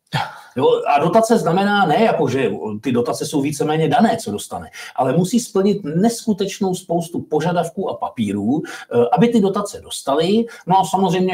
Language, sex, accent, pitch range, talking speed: Czech, male, native, 155-205 Hz, 150 wpm